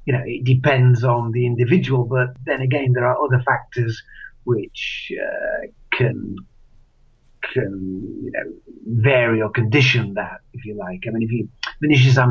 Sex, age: male, 50-69